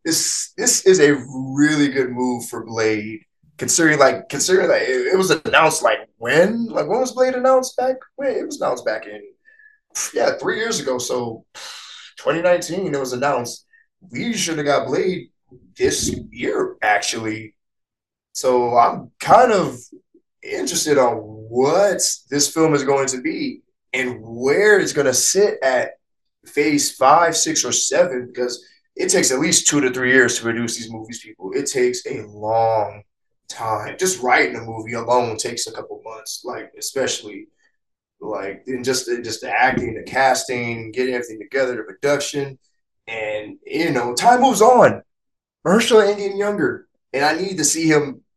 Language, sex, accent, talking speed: English, male, American, 165 wpm